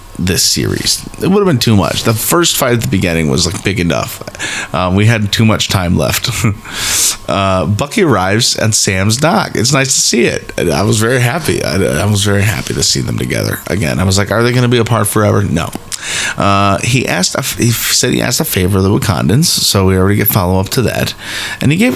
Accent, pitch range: American, 95-120 Hz